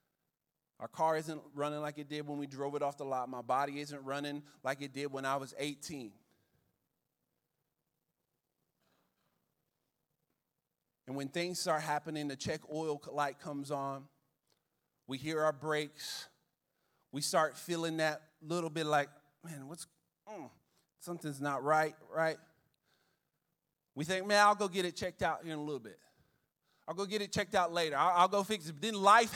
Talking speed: 170 wpm